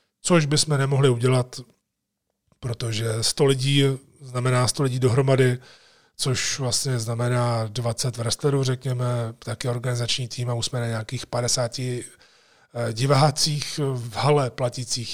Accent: native